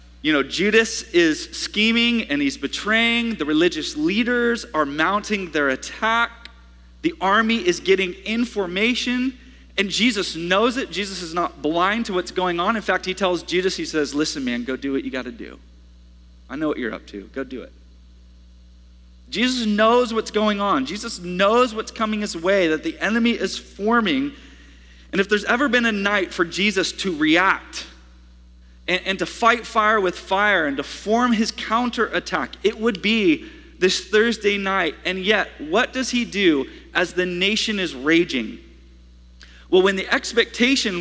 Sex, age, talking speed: male, 30-49, 170 wpm